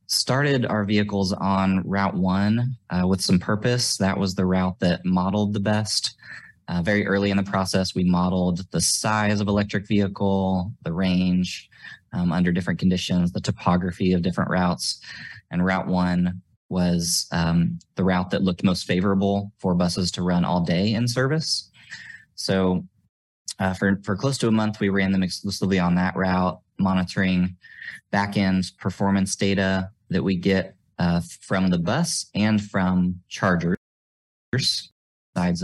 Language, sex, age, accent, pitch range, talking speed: English, male, 20-39, American, 90-100 Hz, 155 wpm